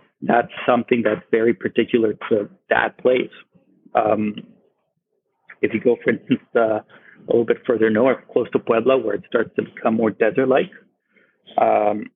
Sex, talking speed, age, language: male, 155 wpm, 30-49, English